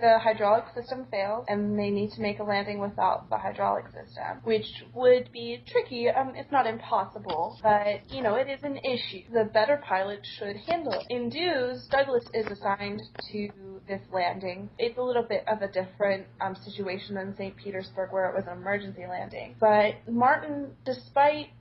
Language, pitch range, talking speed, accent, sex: English, 200-245 Hz, 180 wpm, American, female